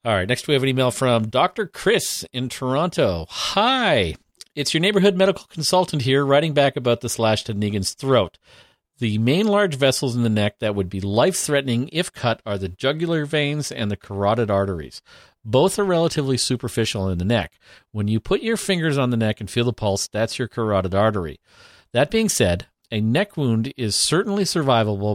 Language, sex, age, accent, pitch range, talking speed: English, male, 50-69, American, 105-145 Hz, 190 wpm